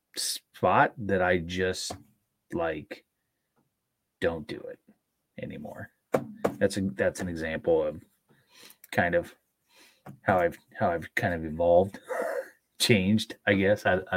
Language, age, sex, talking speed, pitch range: English, 30-49, male, 120 wpm, 95-120 Hz